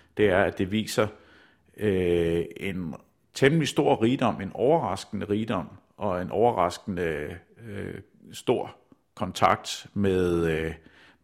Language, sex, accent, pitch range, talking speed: Danish, male, native, 85-100 Hz, 110 wpm